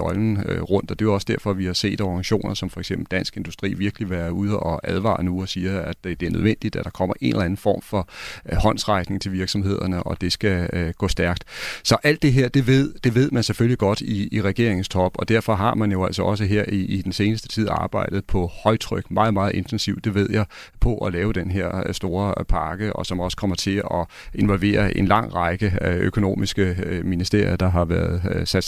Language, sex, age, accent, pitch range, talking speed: Danish, male, 30-49, native, 95-115 Hz, 215 wpm